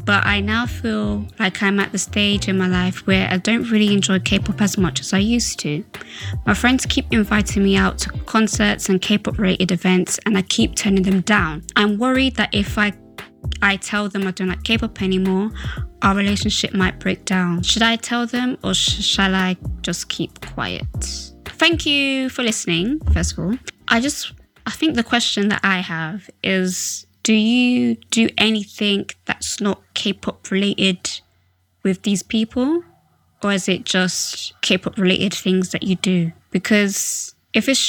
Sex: female